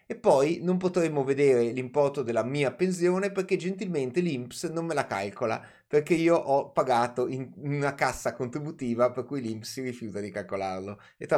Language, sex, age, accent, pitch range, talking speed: Italian, male, 30-49, native, 110-145 Hz, 175 wpm